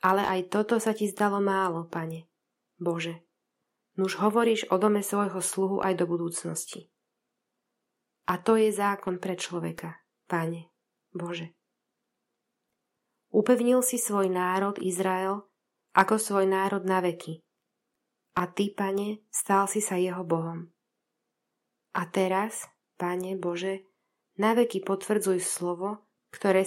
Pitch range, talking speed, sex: 180-200 Hz, 120 wpm, female